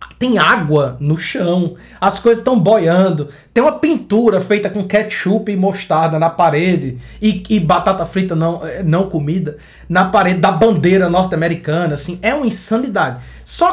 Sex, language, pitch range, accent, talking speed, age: male, Portuguese, 160-240 Hz, Brazilian, 155 wpm, 20-39